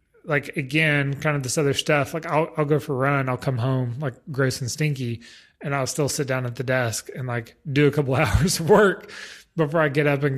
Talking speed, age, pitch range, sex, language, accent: 250 wpm, 30-49, 125-150 Hz, male, English, American